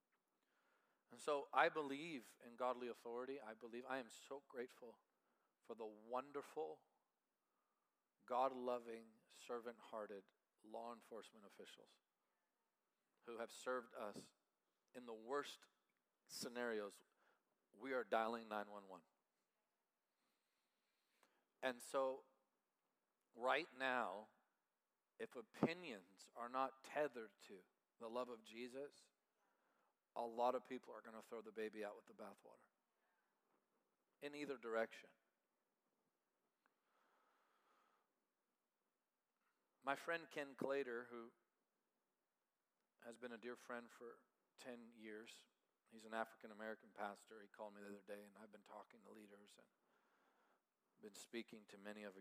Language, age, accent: English, 40-59, American